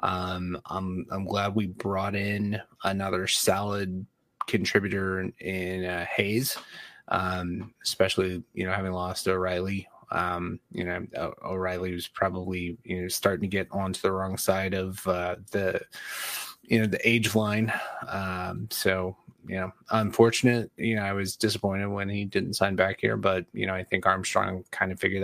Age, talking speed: 20-39, 165 wpm